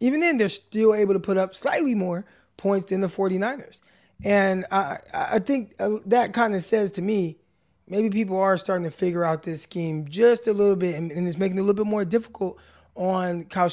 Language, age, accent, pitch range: English, 20-39, American, 165-210 Hz